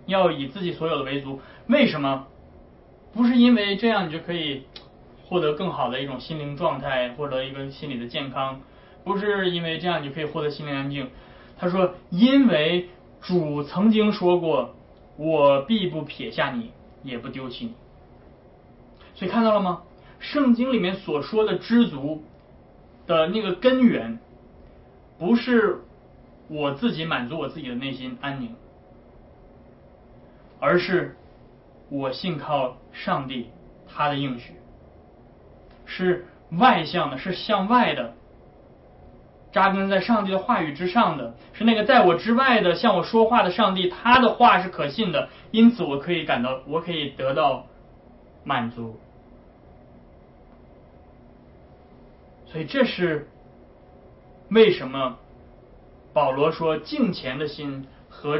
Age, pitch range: 20-39, 130-195 Hz